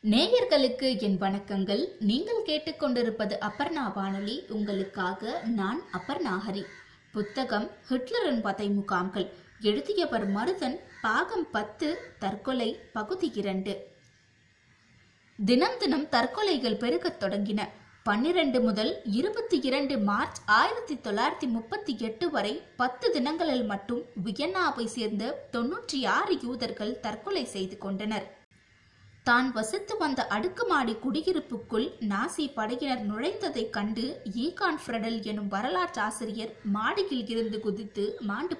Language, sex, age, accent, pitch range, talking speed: Tamil, female, 20-39, native, 205-290 Hz, 85 wpm